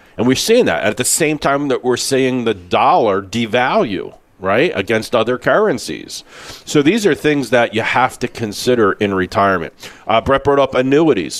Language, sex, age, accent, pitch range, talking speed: English, male, 50-69, American, 105-140 Hz, 180 wpm